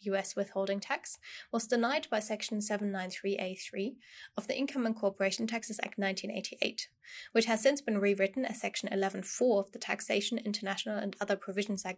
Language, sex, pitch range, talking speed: English, female, 195-235 Hz, 160 wpm